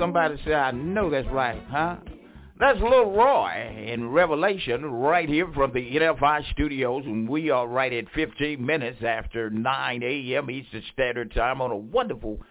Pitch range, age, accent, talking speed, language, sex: 120-155 Hz, 60-79, American, 165 wpm, English, male